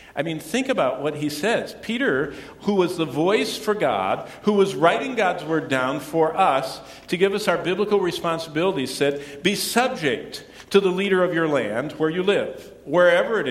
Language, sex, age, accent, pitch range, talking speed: English, male, 50-69, American, 140-200 Hz, 185 wpm